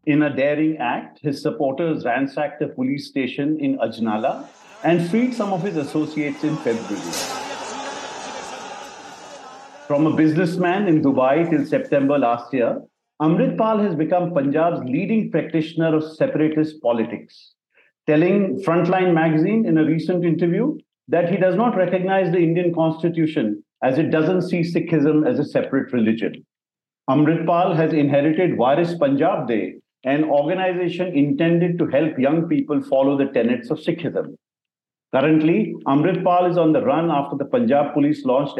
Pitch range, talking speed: 145-175 Hz, 145 wpm